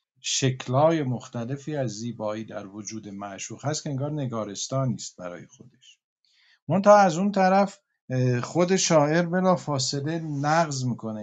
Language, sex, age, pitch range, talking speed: Persian, male, 50-69, 120-160 Hz, 130 wpm